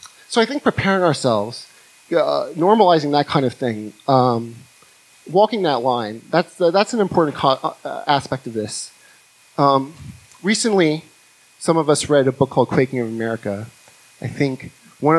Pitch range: 115-145 Hz